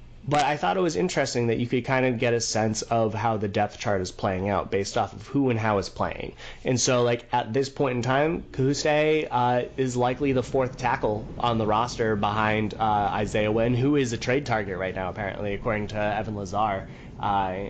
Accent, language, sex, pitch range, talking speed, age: American, English, male, 105-125 Hz, 220 wpm, 30-49